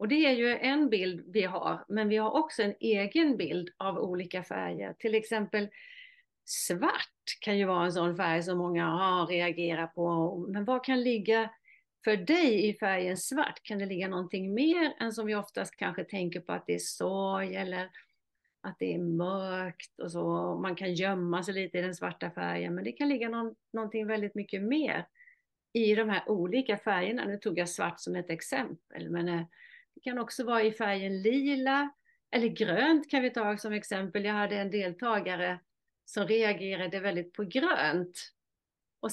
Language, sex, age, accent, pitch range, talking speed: Swedish, female, 40-59, native, 185-255 Hz, 180 wpm